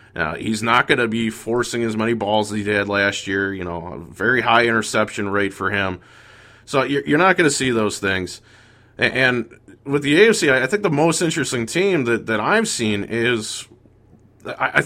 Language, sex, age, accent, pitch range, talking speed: English, male, 20-39, American, 100-135 Hz, 200 wpm